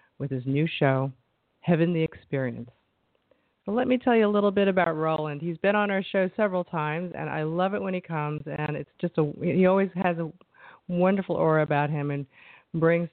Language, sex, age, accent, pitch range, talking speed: English, female, 40-59, American, 150-195 Hz, 200 wpm